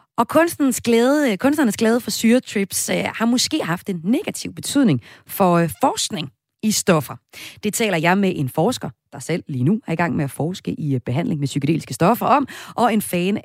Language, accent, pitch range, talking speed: Danish, native, 150-225 Hz, 185 wpm